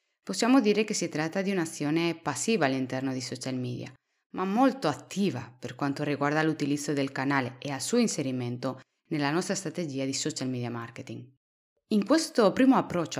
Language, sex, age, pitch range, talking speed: Italian, female, 20-39, 140-205 Hz, 165 wpm